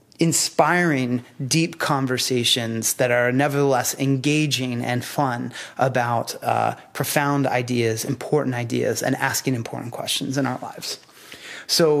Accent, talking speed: American, 115 wpm